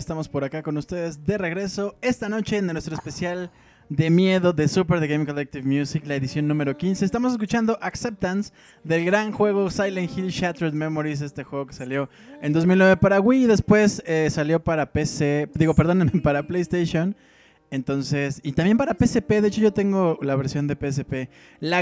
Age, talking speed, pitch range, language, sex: 20-39, 180 wpm, 145-190 Hz, Spanish, male